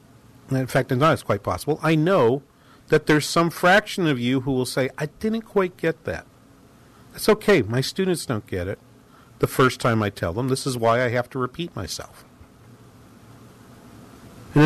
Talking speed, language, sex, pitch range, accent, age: 190 wpm, English, male, 115-150 Hz, American, 50-69